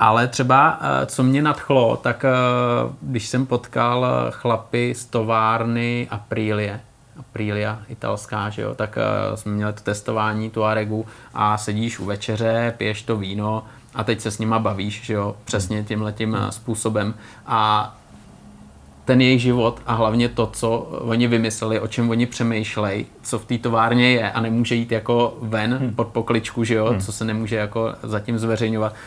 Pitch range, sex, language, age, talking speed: 105-120 Hz, male, Czech, 30-49, 155 wpm